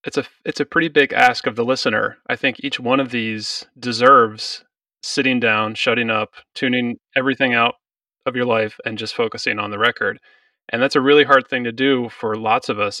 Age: 30-49